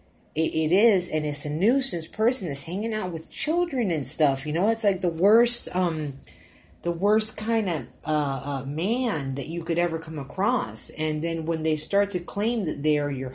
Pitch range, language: 140-175 Hz, English